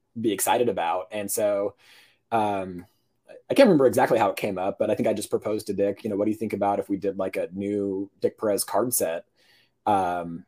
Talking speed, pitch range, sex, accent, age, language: 230 wpm, 100-145 Hz, male, American, 30-49, English